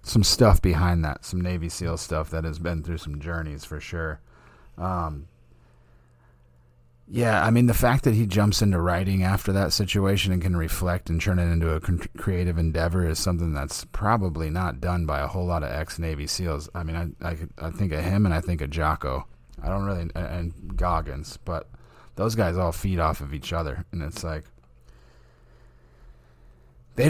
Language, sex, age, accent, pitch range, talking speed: English, male, 30-49, American, 80-95 Hz, 190 wpm